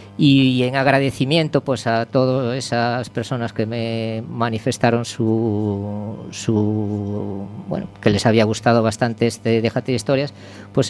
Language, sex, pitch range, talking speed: Spanish, female, 110-130 Hz, 130 wpm